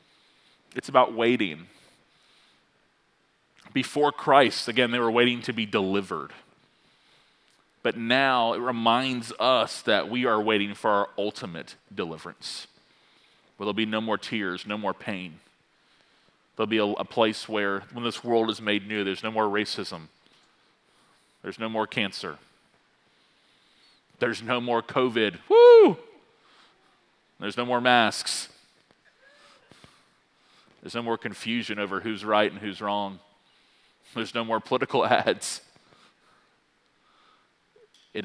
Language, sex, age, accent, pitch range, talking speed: English, male, 30-49, American, 100-120 Hz, 125 wpm